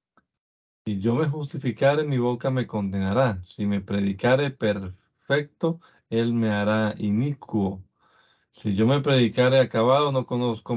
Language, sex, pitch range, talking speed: Spanish, male, 100-120 Hz, 130 wpm